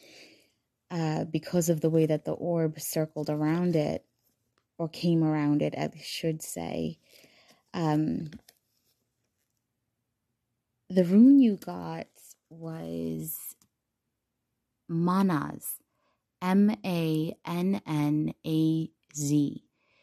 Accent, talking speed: American, 80 wpm